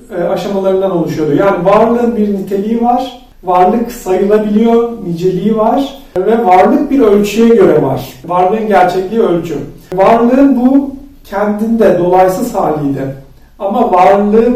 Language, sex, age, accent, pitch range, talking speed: Turkish, male, 40-59, native, 180-230 Hz, 115 wpm